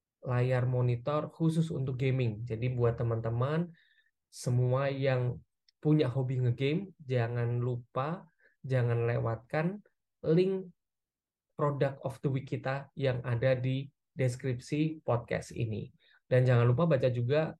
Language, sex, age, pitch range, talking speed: Indonesian, male, 20-39, 125-150 Hz, 120 wpm